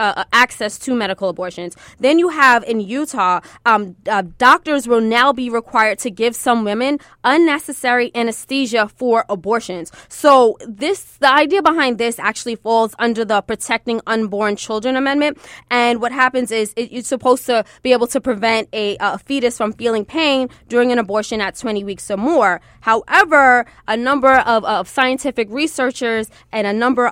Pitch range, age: 210-255 Hz, 20-39